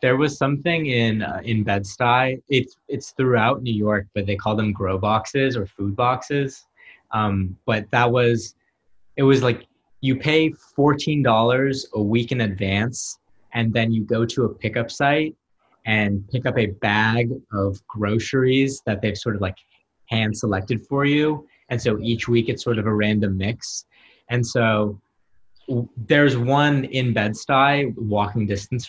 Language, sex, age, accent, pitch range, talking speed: English, male, 20-39, American, 105-130 Hz, 160 wpm